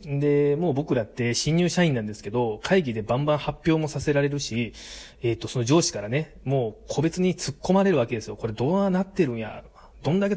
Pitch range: 120-165 Hz